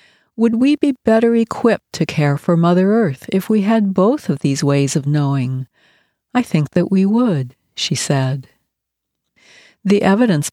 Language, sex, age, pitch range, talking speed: English, female, 60-79, 160-210 Hz, 160 wpm